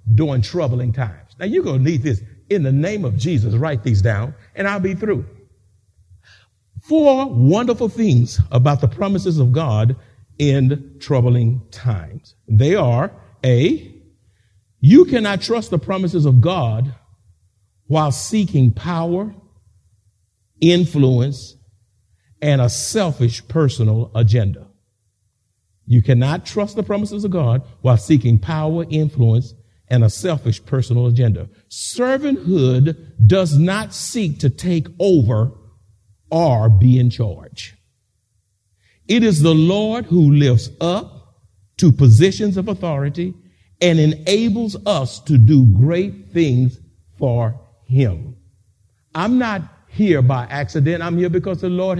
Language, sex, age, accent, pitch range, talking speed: English, male, 50-69, American, 110-175 Hz, 125 wpm